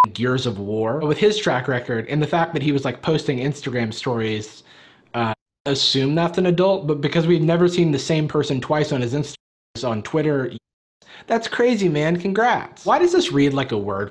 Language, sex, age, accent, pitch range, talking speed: English, male, 30-49, American, 120-175 Hz, 205 wpm